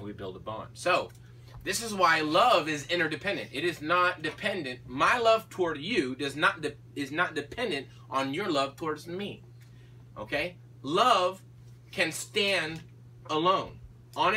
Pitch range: 120-150 Hz